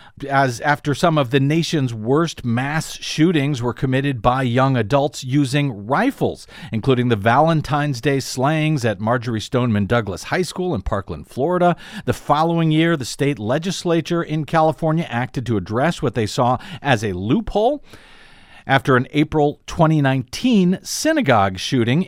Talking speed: 145 wpm